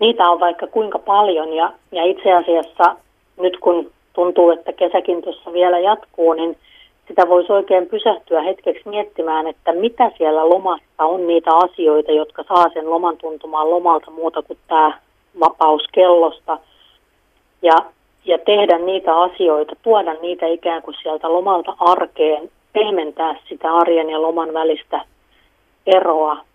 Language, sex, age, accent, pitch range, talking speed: Finnish, female, 40-59, native, 160-175 Hz, 140 wpm